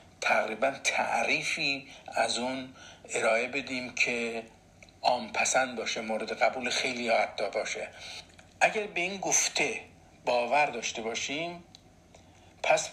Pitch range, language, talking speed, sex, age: 105-150 Hz, Persian, 100 wpm, male, 50-69